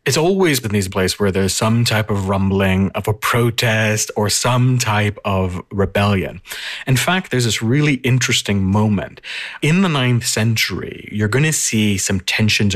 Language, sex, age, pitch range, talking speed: English, male, 30-49, 100-125 Hz, 170 wpm